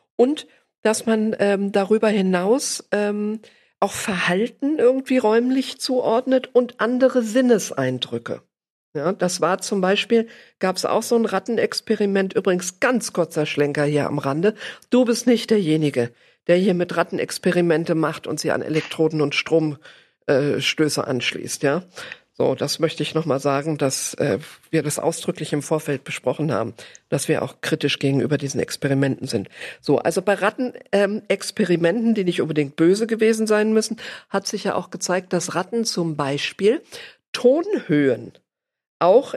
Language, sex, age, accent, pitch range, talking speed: German, female, 50-69, German, 155-220 Hz, 150 wpm